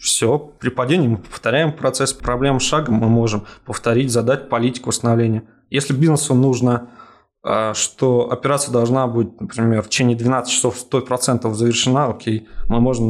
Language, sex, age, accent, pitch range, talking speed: Russian, male, 20-39, native, 115-135 Hz, 140 wpm